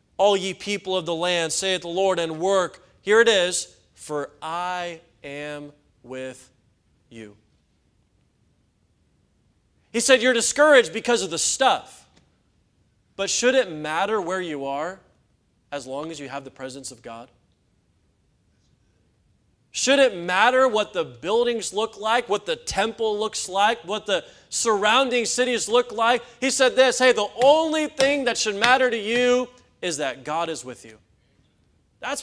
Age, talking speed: 30-49, 150 wpm